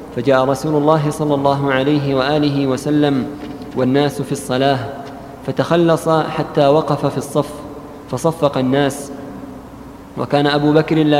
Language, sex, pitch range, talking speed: Arabic, male, 140-150 Hz, 120 wpm